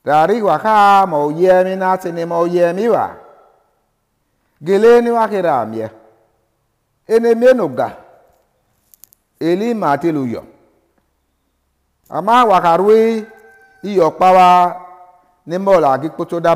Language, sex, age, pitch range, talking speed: English, male, 50-69, 120-190 Hz, 85 wpm